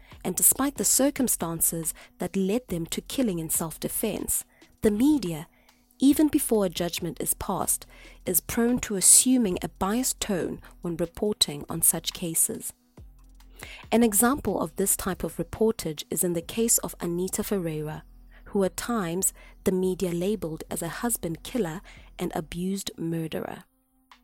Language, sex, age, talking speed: English, female, 20-39, 145 wpm